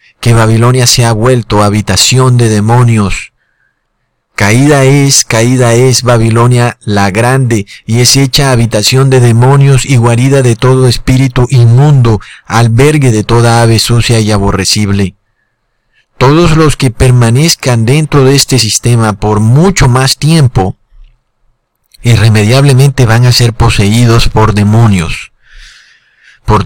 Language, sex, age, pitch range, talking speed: Spanish, male, 40-59, 110-135 Hz, 120 wpm